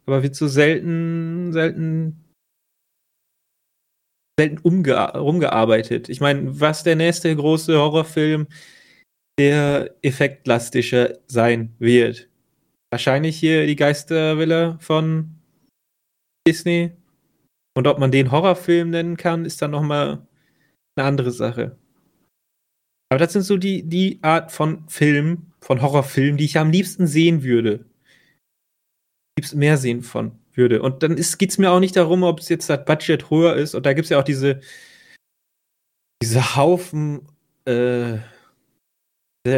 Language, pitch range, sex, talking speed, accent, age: German, 125-165 Hz, male, 125 wpm, German, 30-49